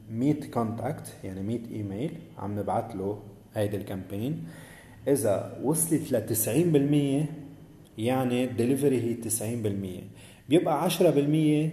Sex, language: male, English